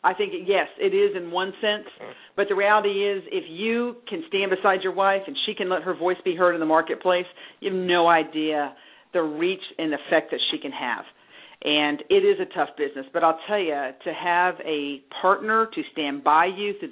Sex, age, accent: female, 50-69, American